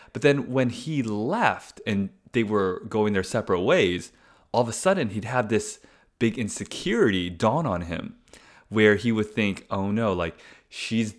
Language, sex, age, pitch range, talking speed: English, male, 20-39, 105-135 Hz, 170 wpm